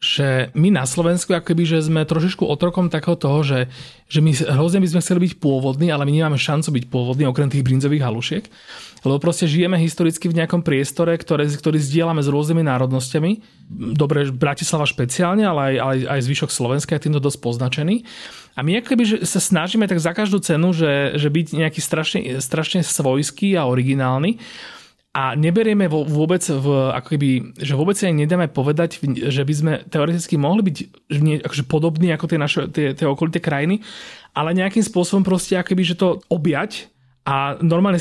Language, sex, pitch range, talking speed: Slovak, male, 145-175 Hz, 175 wpm